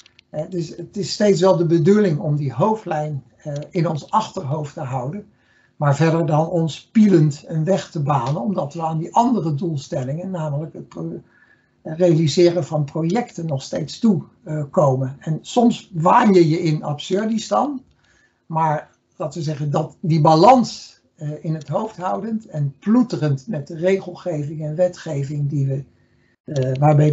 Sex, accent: male, Dutch